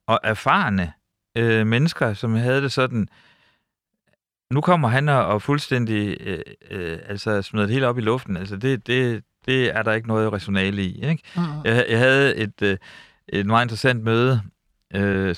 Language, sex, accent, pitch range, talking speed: Danish, male, native, 100-130 Hz, 170 wpm